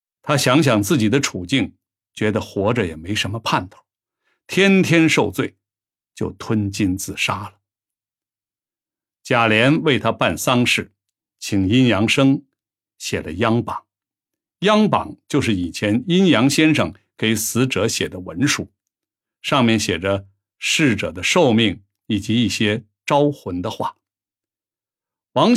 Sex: male